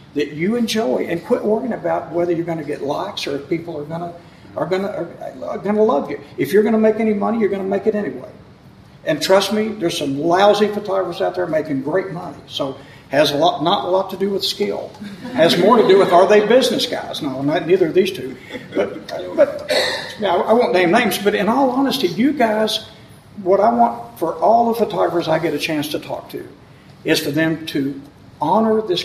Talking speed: 230 wpm